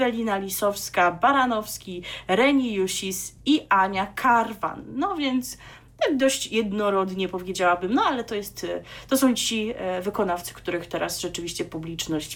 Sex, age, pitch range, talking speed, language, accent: female, 30-49, 180-245 Hz, 125 wpm, Polish, native